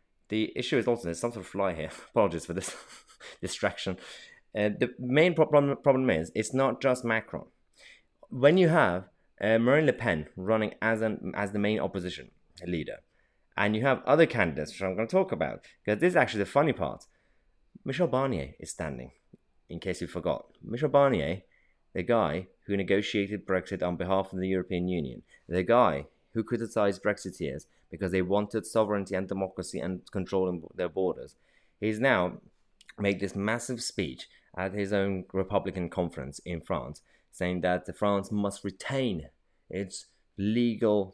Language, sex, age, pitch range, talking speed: English, male, 30-49, 90-120 Hz, 165 wpm